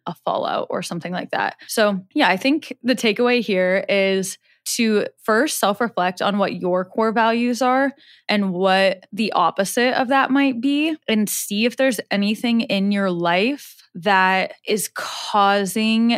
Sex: female